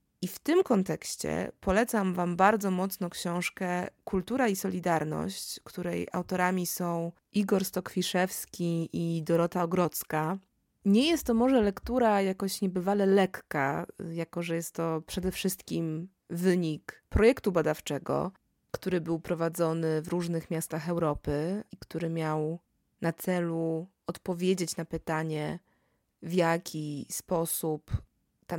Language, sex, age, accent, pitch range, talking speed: Polish, female, 20-39, native, 165-195 Hz, 120 wpm